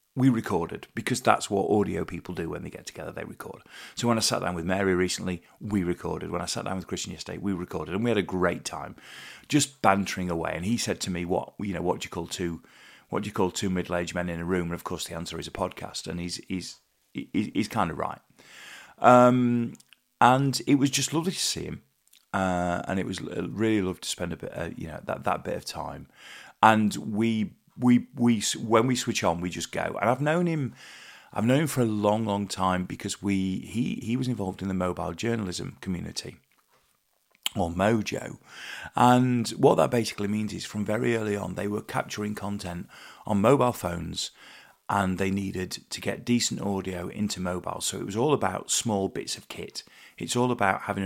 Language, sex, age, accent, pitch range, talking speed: English, male, 30-49, British, 90-120 Hz, 215 wpm